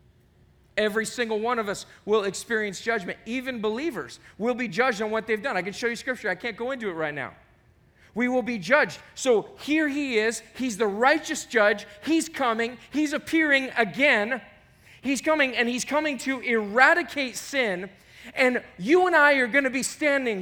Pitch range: 215-285 Hz